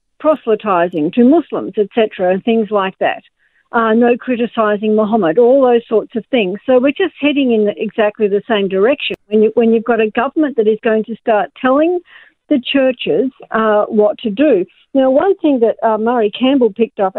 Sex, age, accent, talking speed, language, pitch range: female, 50-69, Australian, 190 wpm, English, 225-290 Hz